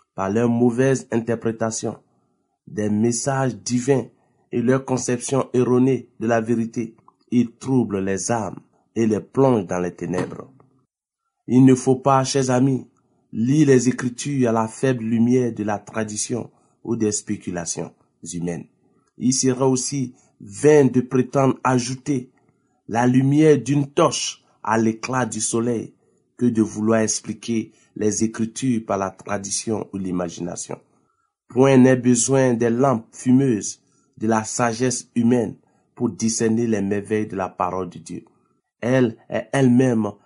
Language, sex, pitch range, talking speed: French, male, 110-130 Hz, 135 wpm